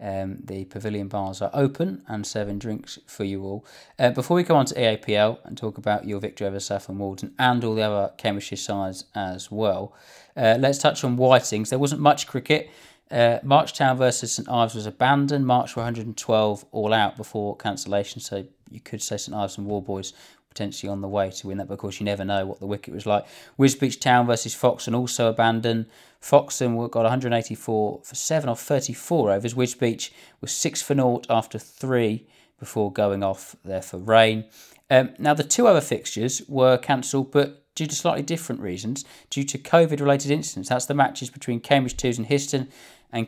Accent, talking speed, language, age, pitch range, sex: British, 195 wpm, English, 20-39, 105-135 Hz, male